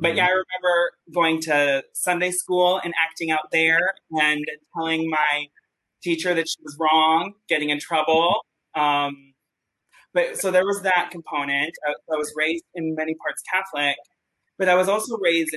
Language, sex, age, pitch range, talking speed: English, male, 20-39, 150-175 Hz, 165 wpm